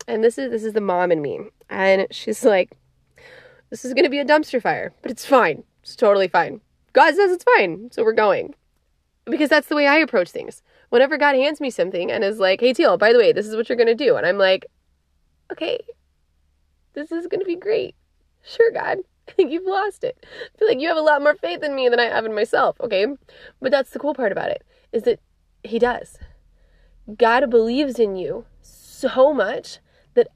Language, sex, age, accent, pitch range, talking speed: English, female, 20-39, American, 200-305 Hz, 220 wpm